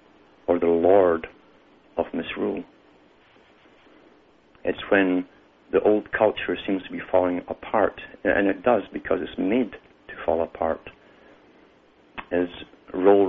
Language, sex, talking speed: English, male, 115 wpm